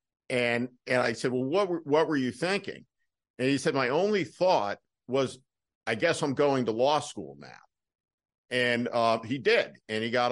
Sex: male